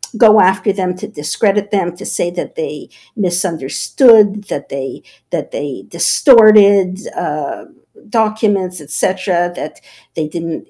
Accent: American